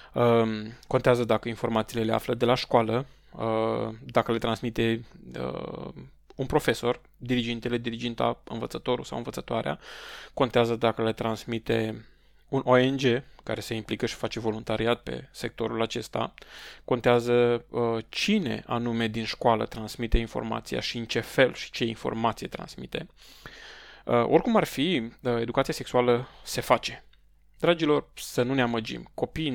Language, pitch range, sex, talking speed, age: Romanian, 115-125 Hz, male, 125 wpm, 20-39